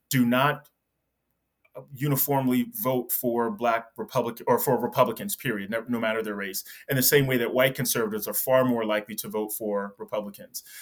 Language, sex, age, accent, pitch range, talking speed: English, male, 30-49, American, 120-140 Hz, 165 wpm